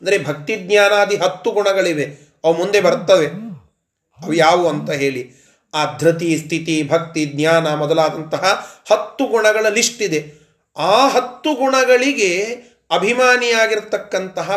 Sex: male